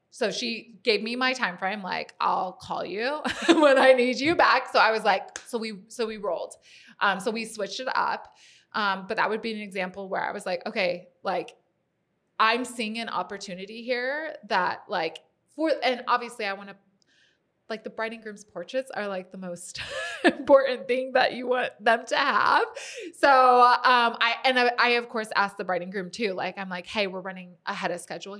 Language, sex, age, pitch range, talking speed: English, female, 20-39, 190-245 Hz, 205 wpm